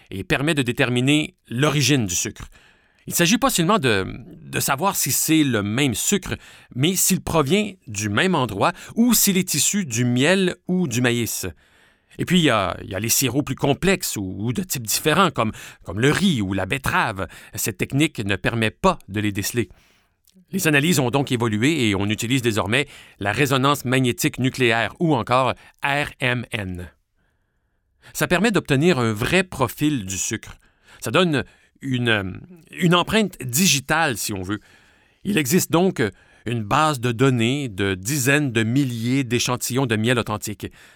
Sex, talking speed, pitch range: male, 165 wpm, 110-155 Hz